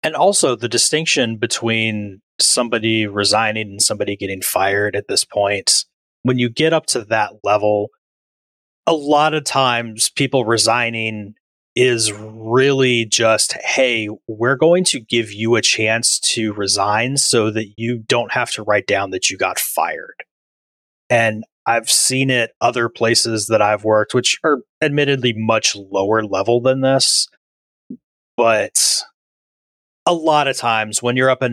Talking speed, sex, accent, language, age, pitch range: 150 wpm, male, American, English, 30-49, 105-125 Hz